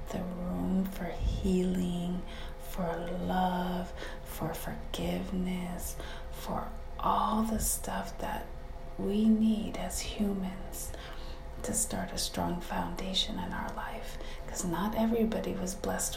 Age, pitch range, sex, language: 30-49, 175-220 Hz, female, English